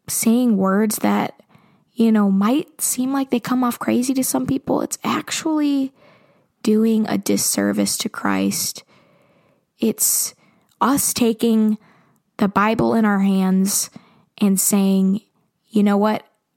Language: English